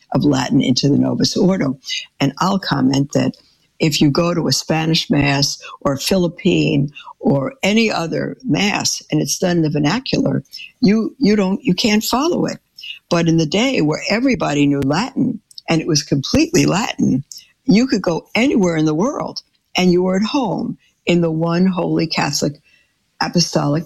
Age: 60-79